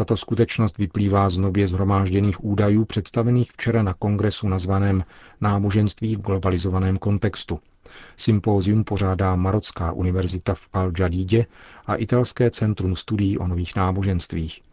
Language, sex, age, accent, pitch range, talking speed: Czech, male, 40-59, native, 95-110 Hz, 120 wpm